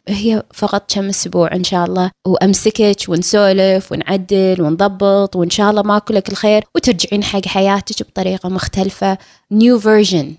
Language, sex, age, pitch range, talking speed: Arabic, female, 20-39, 175-215 Hz, 135 wpm